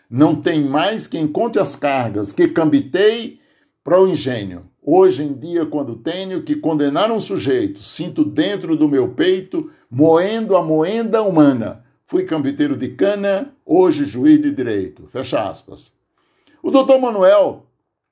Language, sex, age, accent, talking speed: Portuguese, male, 60-79, Brazilian, 140 wpm